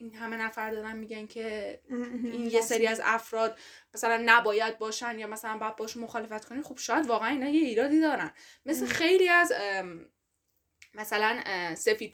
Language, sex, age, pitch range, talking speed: Persian, female, 10-29, 190-240 Hz, 160 wpm